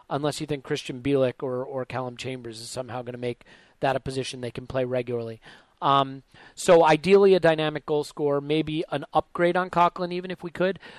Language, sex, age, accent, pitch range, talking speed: English, male, 40-59, American, 135-170 Hz, 200 wpm